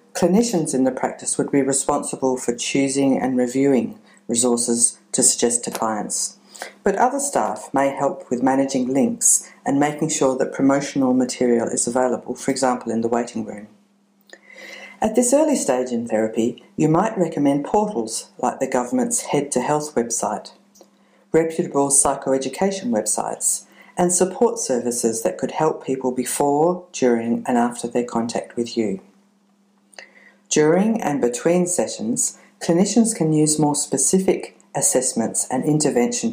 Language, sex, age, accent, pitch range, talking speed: English, female, 50-69, Australian, 125-195 Hz, 140 wpm